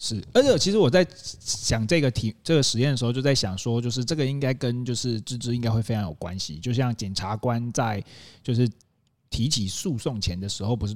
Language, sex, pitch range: Chinese, male, 105-140 Hz